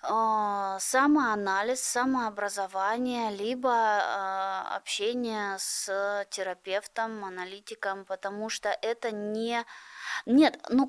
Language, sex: Russian, female